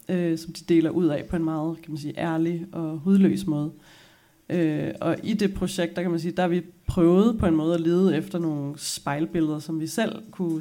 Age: 30-49